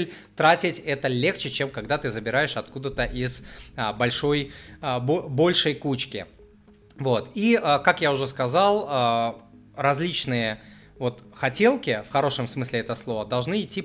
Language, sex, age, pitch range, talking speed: Russian, male, 20-39, 120-150 Hz, 120 wpm